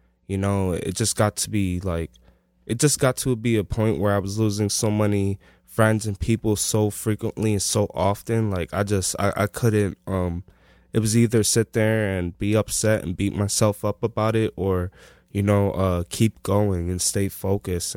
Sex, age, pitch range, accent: male, 20-39, 90-105 Hz, American